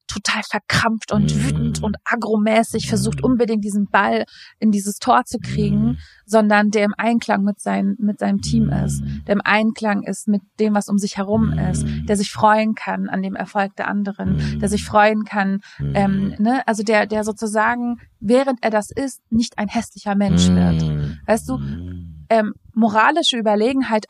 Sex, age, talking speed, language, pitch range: female, 30-49, 170 wpm, German, 190-220 Hz